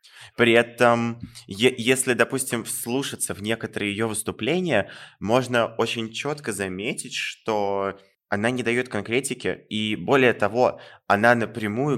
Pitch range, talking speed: 100-120 Hz, 115 wpm